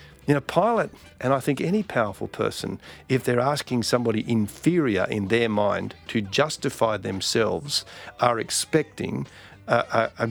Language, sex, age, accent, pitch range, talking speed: English, male, 50-69, Australian, 105-130 Hz, 145 wpm